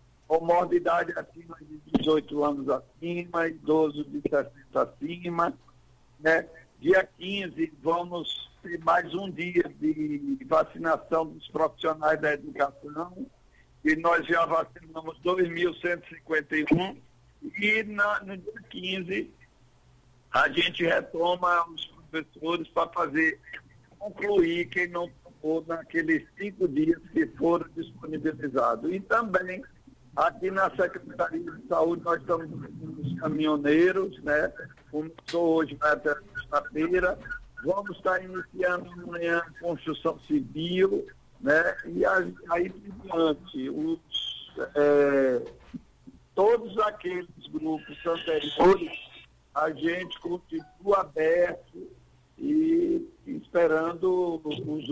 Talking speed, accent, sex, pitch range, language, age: 100 wpm, Brazilian, male, 155-190 Hz, Portuguese, 60-79